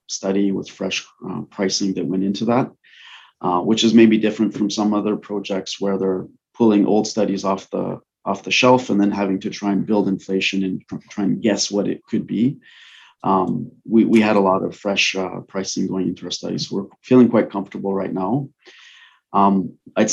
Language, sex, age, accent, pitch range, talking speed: English, male, 30-49, Canadian, 95-110 Hz, 200 wpm